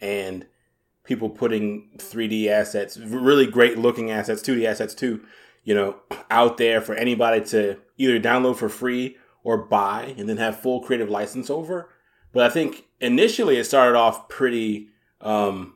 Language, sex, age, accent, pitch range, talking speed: English, male, 20-39, American, 105-125 Hz, 155 wpm